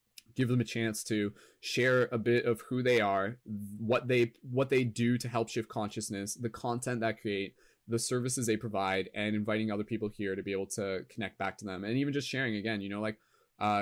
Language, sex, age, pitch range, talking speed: English, male, 20-39, 105-125 Hz, 225 wpm